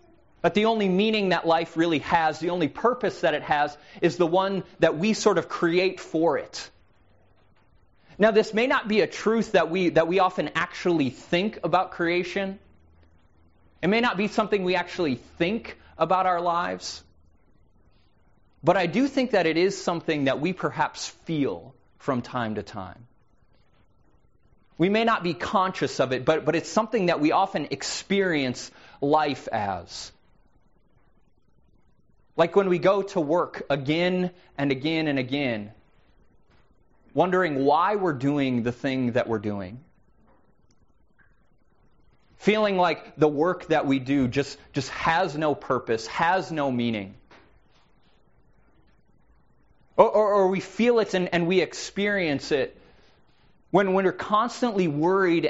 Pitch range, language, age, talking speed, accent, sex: 130-185 Hz, English, 30-49, 145 wpm, American, male